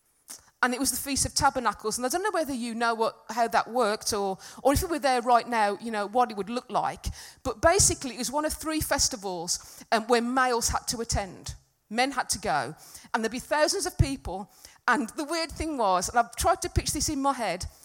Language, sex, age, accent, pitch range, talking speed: English, female, 40-59, British, 220-285 Hz, 235 wpm